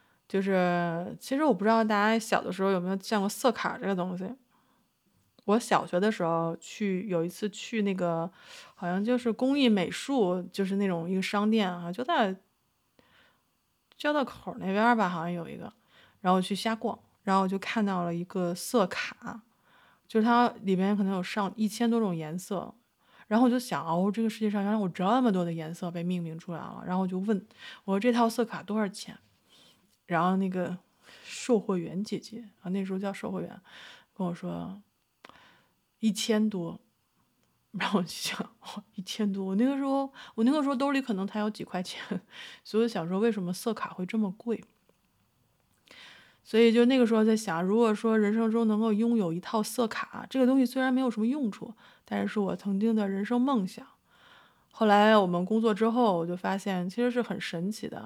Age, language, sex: 20-39, Chinese, female